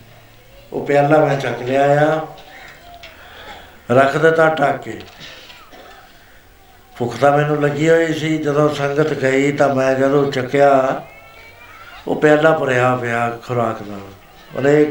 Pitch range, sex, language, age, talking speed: 130-155 Hz, male, Punjabi, 60-79, 120 wpm